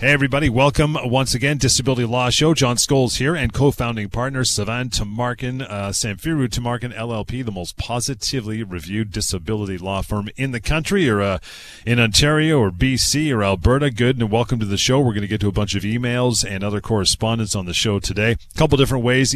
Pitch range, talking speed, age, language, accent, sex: 95-125 Hz, 200 wpm, 40-59, English, American, male